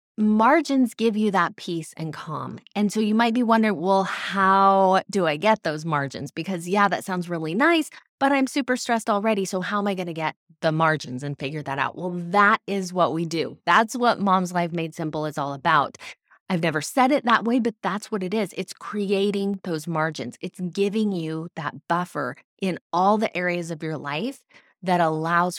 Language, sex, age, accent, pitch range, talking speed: English, female, 20-39, American, 165-215 Hz, 205 wpm